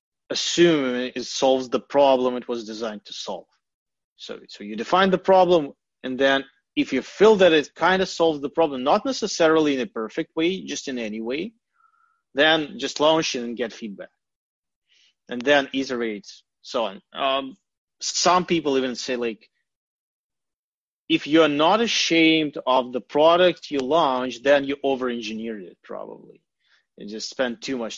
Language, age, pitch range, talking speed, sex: English, 30-49, 125-160 Hz, 165 wpm, male